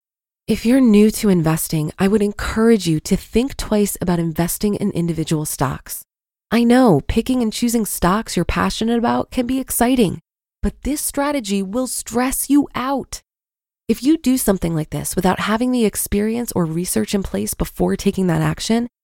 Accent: American